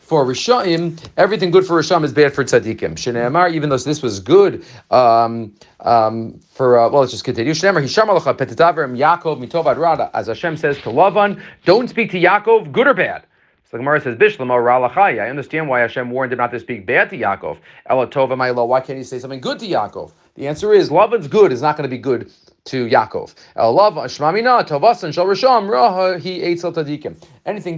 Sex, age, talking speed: male, 40-59, 170 wpm